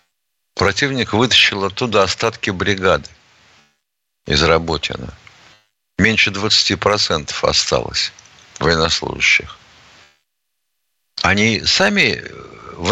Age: 60-79